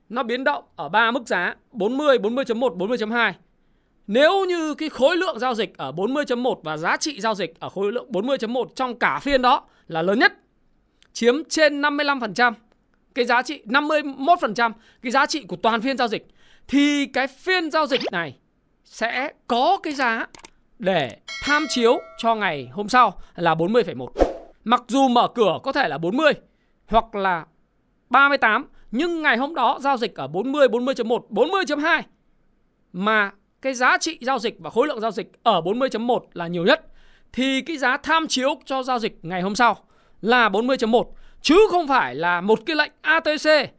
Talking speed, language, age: 175 wpm, Vietnamese, 20-39